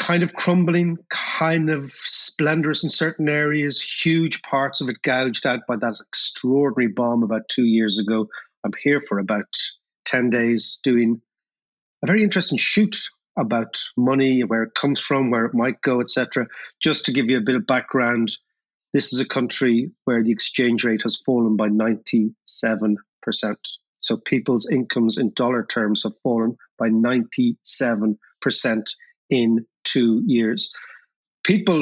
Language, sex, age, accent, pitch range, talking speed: English, male, 30-49, Irish, 115-145 Hz, 150 wpm